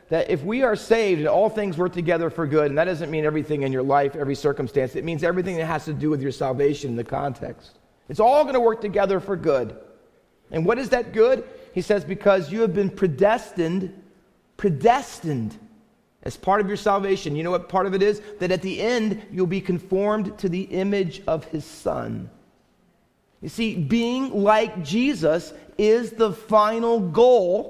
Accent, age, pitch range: American, 40-59, 160-220 Hz